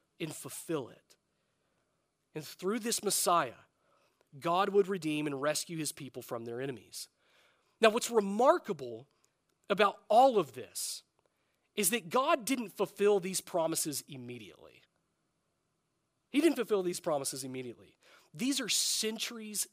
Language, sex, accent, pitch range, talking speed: English, male, American, 165-235 Hz, 125 wpm